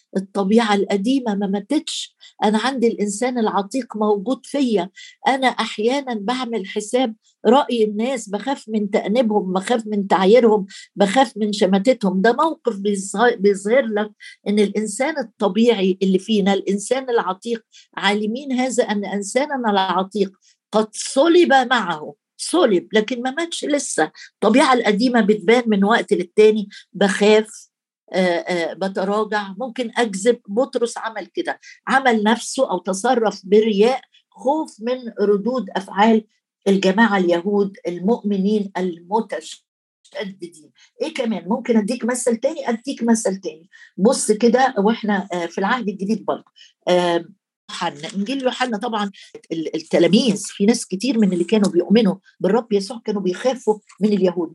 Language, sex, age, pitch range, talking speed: Arabic, female, 50-69, 200-245 Hz, 120 wpm